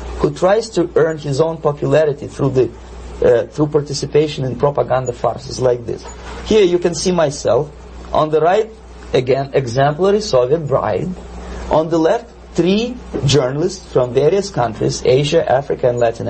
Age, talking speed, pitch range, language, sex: 40-59, 150 wpm, 115-165 Hz, English, male